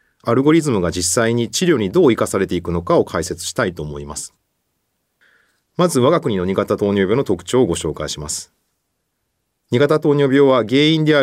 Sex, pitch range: male, 90-145 Hz